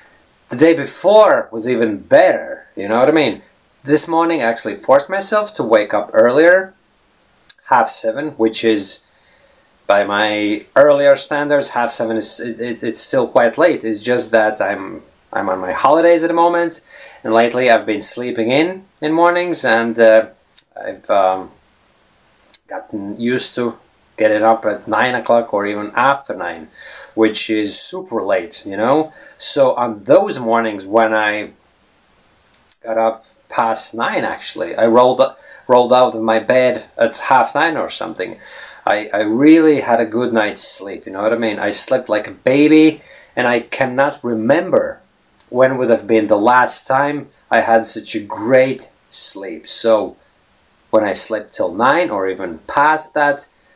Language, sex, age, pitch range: English, male, 30-49, 110-145 Hz